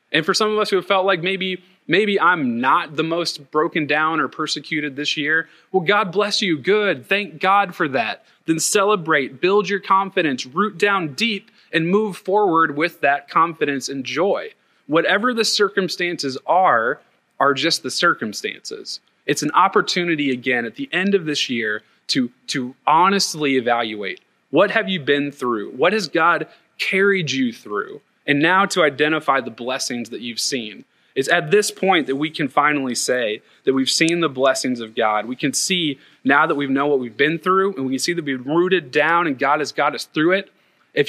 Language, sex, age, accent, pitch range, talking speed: English, male, 30-49, American, 140-190 Hz, 190 wpm